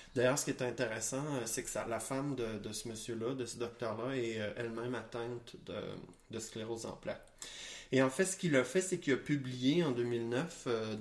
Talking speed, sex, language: 200 wpm, male, English